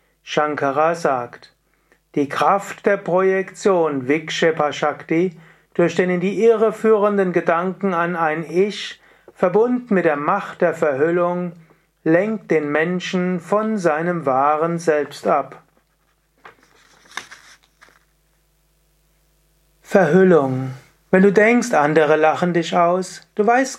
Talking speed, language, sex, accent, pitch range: 100 wpm, German, male, German, 155-195 Hz